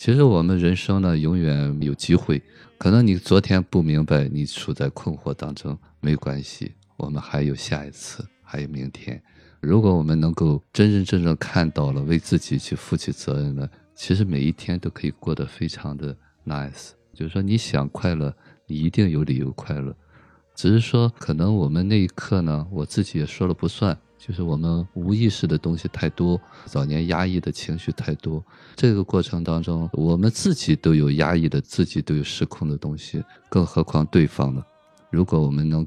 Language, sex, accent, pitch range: Chinese, male, native, 75-90 Hz